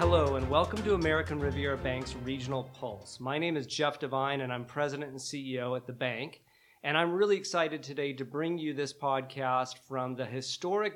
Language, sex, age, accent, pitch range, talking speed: English, male, 40-59, American, 130-155 Hz, 190 wpm